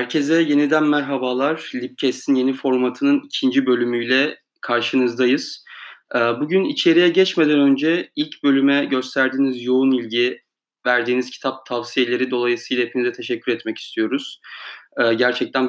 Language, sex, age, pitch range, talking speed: Turkish, male, 30-49, 125-155 Hz, 105 wpm